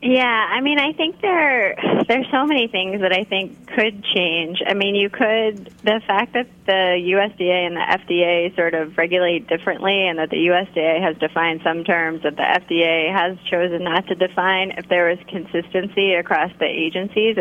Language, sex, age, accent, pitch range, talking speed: English, female, 20-39, American, 160-190 Hz, 185 wpm